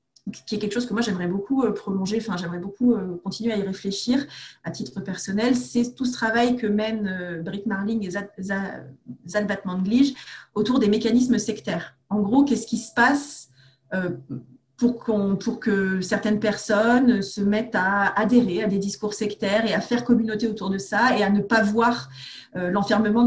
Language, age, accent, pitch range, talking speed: French, 30-49, French, 190-235 Hz, 180 wpm